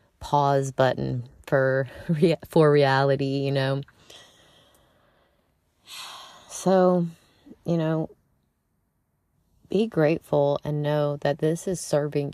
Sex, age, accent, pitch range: female, 30-49, American, 140-170 Hz